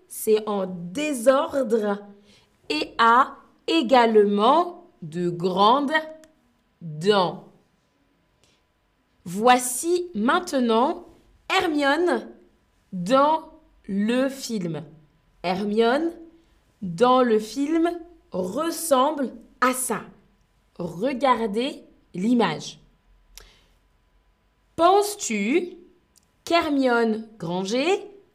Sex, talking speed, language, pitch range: female, 55 wpm, French, 195-315 Hz